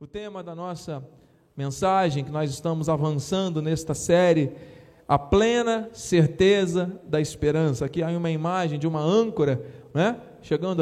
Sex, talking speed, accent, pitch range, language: male, 140 wpm, Brazilian, 140-160 Hz, Portuguese